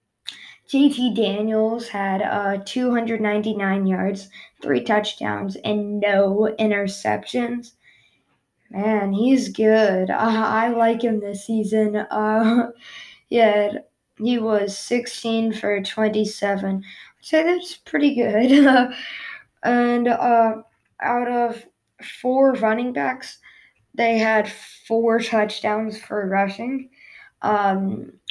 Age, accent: 20-39, American